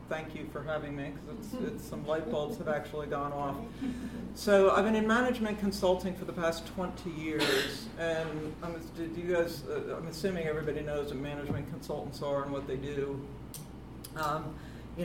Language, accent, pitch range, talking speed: English, American, 140-160 Hz, 185 wpm